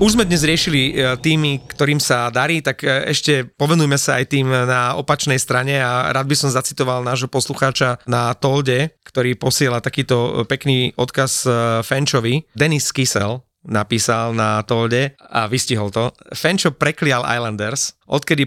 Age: 30-49